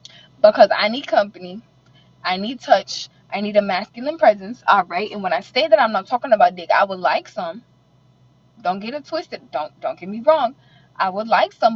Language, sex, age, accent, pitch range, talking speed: English, female, 20-39, American, 195-315 Hz, 210 wpm